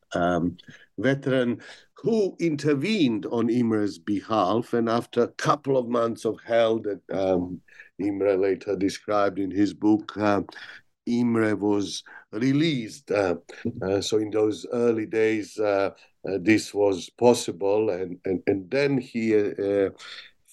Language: English